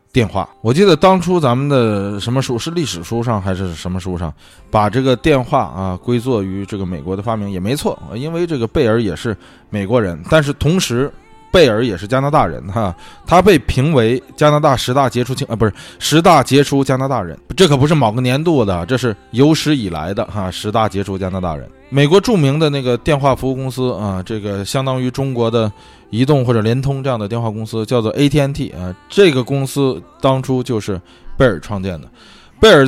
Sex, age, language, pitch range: male, 20-39, Chinese, 100-135 Hz